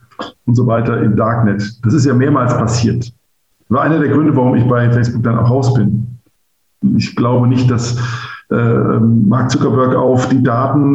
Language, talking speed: German, 175 wpm